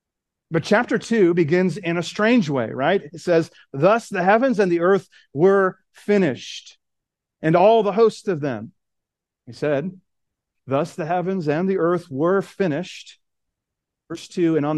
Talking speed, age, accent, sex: 160 wpm, 40-59, American, male